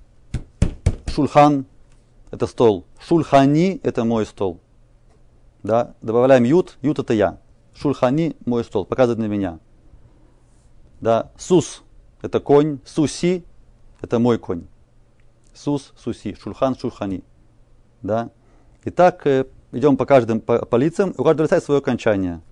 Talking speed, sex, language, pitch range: 115 wpm, male, Russian, 110-135 Hz